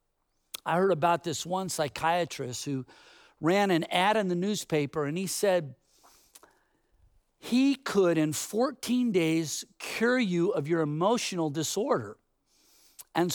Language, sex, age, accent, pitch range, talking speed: English, male, 50-69, American, 150-210 Hz, 125 wpm